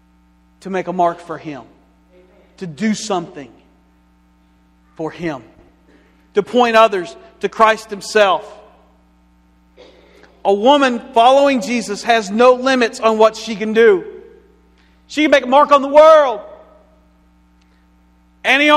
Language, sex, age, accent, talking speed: English, male, 40-59, American, 120 wpm